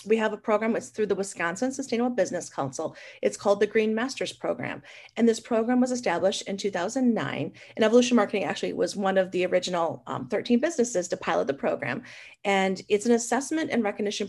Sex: female